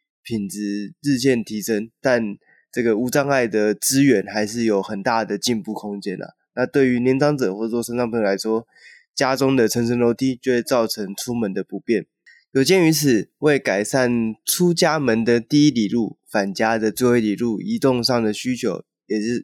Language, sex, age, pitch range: Chinese, male, 20-39, 110-130 Hz